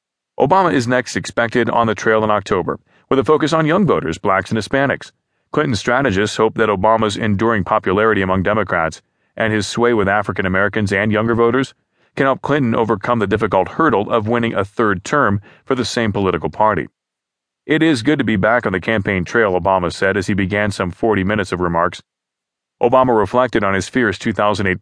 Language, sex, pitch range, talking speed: English, male, 100-115 Hz, 190 wpm